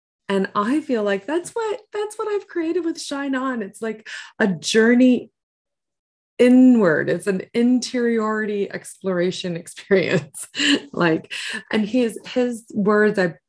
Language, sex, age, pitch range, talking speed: English, female, 30-49, 155-250 Hz, 135 wpm